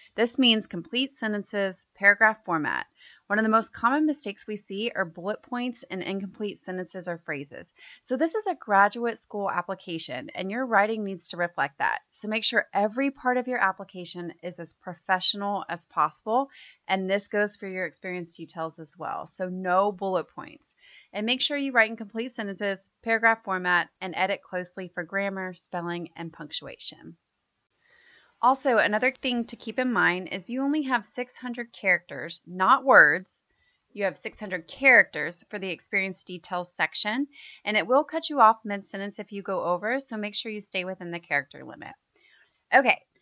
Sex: female